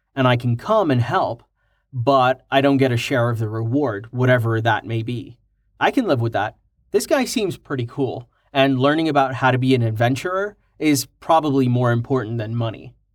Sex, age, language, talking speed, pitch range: male, 30-49, English, 195 wpm, 115-145 Hz